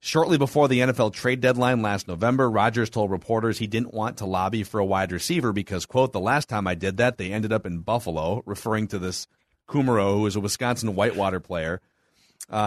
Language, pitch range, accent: English, 110-145 Hz, American